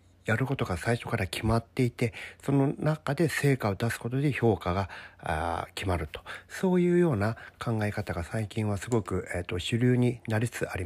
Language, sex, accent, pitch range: Japanese, male, native, 95-140 Hz